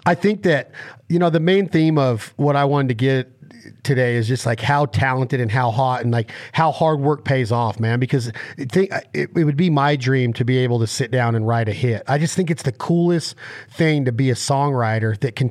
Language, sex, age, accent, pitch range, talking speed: English, male, 40-59, American, 125-160 Hz, 230 wpm